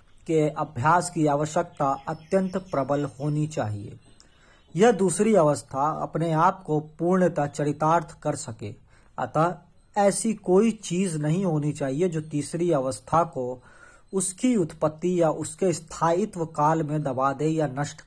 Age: 40-59